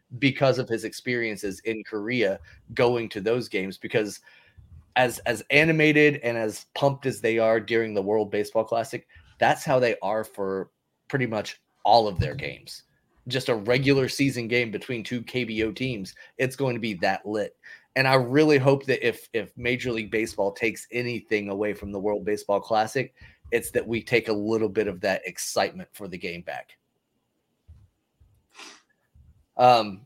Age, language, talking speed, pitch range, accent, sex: 30-49, English, 170 wpm, 110-130 Hz, American, male